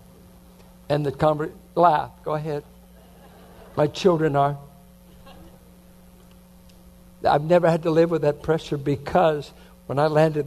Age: 60-79